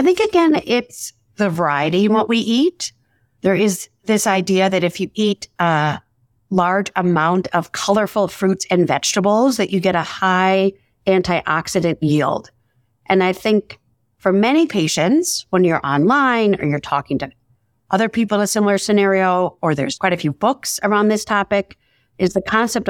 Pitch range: 160-210 Hz